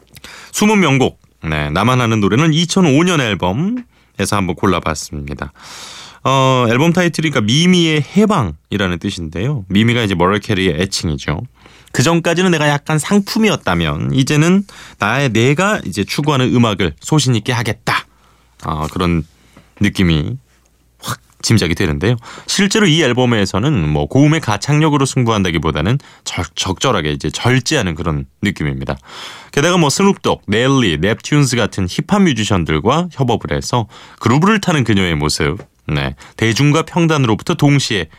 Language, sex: Korean, male